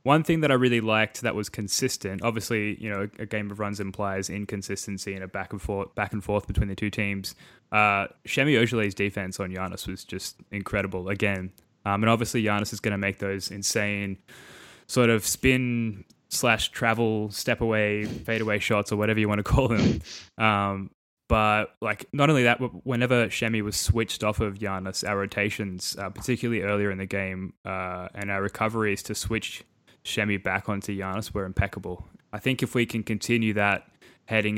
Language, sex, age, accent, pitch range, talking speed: English, male, 10-29, Australian, 100-110 Hz, 190 wpm